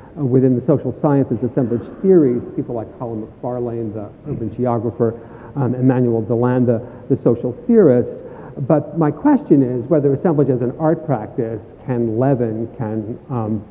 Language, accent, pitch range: English, American, 120-155 Hz